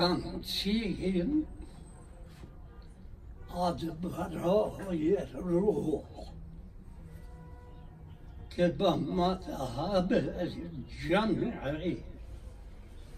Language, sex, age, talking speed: Persian, male, 60-79, 55 wpm